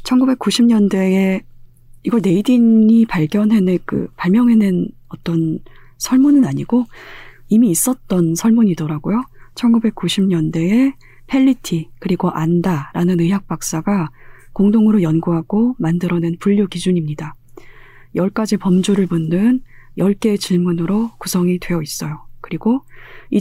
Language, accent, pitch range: Korean, native, 155-210 Hz